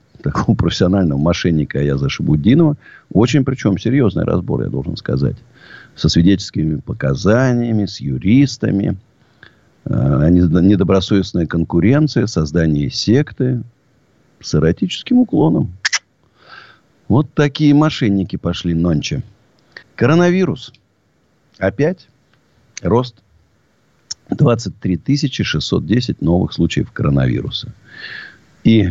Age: 50-69